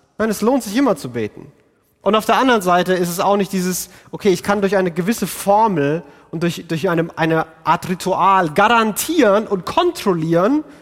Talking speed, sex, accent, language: 195 wpm, male, German, German